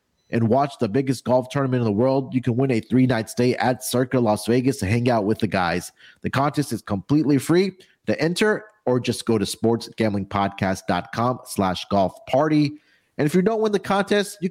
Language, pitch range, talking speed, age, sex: English, 110-145 Hz, 200 wpm, 30-49, male